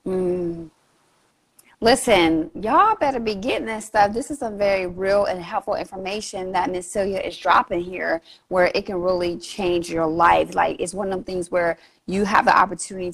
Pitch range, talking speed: 175-215 Hz, 185 wpm